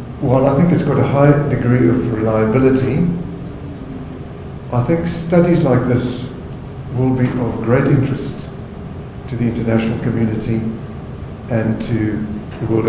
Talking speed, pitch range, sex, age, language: 130 wpm, 115-135 Hz, male, 50-69, English